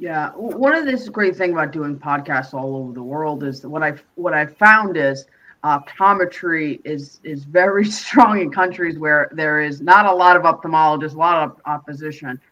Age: 30-49